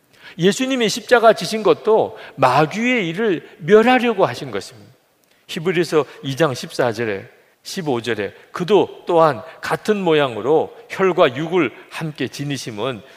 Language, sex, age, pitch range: Korean, male, 40-59, 135-210 Hz